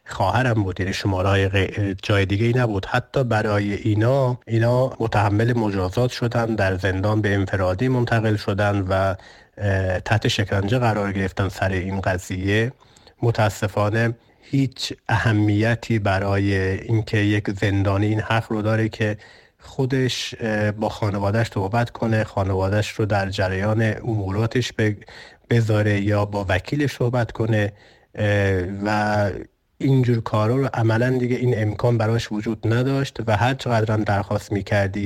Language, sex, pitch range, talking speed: Persian, male, 100-115 Hz, 125 wpm